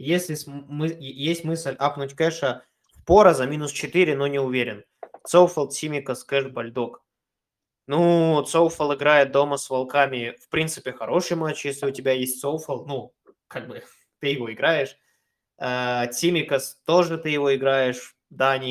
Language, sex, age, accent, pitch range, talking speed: Russian, male, 20-39, native, 130-160 Hz, 155 wpm